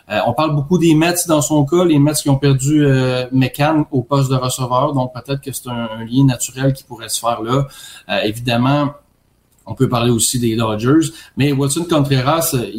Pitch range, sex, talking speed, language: 120-145 Hz, male, 205 wpm, French